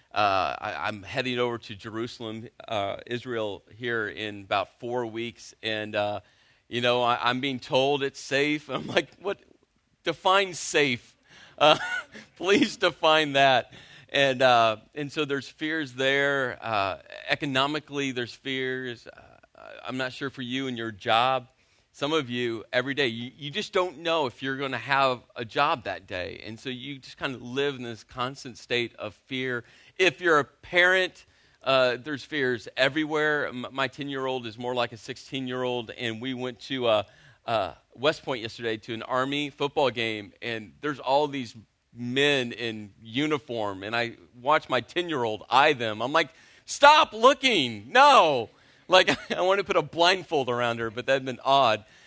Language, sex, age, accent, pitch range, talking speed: English, male, 40-59, American, 115-145 Hz, 170 wpm